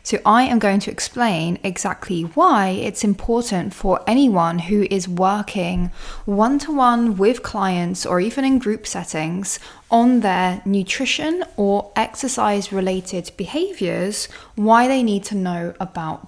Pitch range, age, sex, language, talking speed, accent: 180-230 Hz, 10-29, female, English, 130 wpm, British